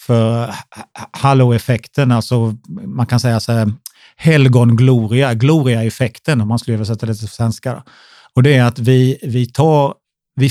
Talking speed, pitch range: 150 wpm, 115-130 Hz